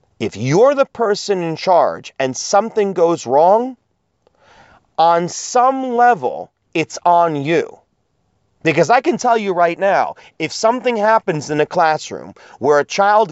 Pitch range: 145-230 Hz